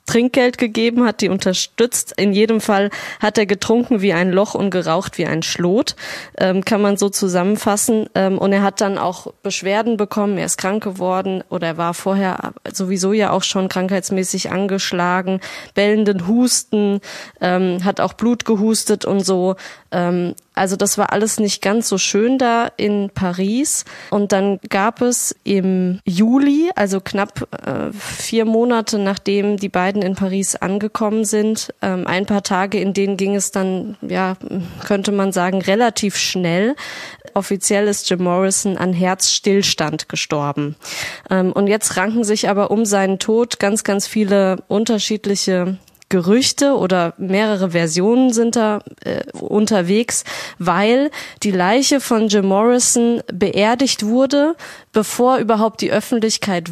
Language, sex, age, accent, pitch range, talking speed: German, female, 20-39, German, 190-230 Hz, 145 wpm